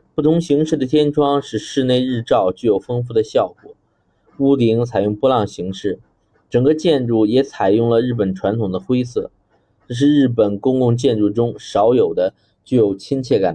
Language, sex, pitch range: Chinese, male, 110-135 Hz